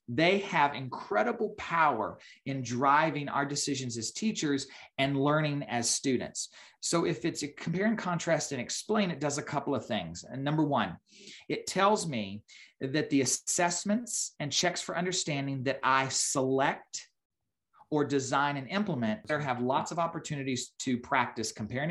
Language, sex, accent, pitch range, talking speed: English, male, American, 125-155 Hz, 155 wpm